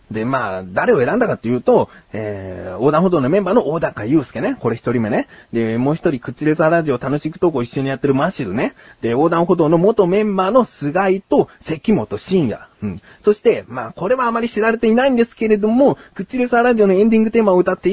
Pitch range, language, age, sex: 140-235 Hz, Japanese, 30-49, male